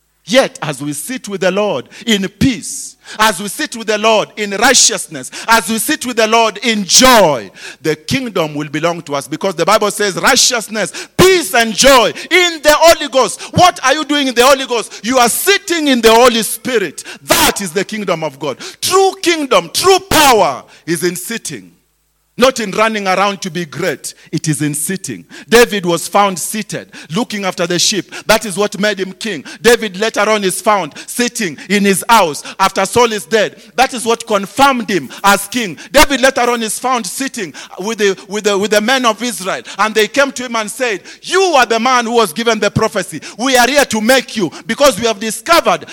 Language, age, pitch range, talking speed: English, 40-59, 195-255 Hz, 205 wpm